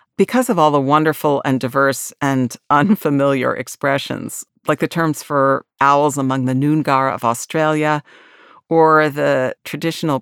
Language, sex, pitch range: English, female, 130-155 Hz